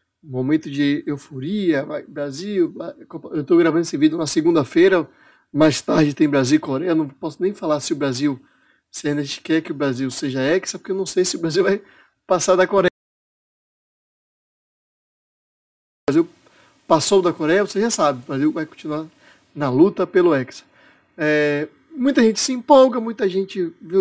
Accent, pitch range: Brazilian, 145-195 Hz